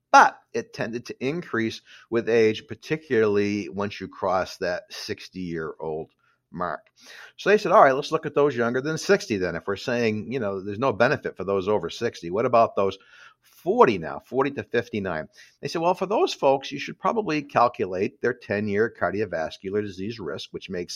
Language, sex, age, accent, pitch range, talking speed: English, male, 50-69, American, 105-145 Hz, 185 wpm